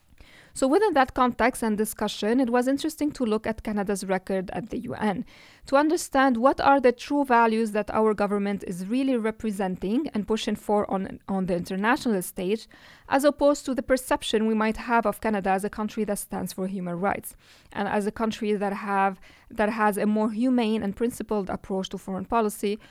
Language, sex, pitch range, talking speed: English, female, 200-245 Hz, 190 wpm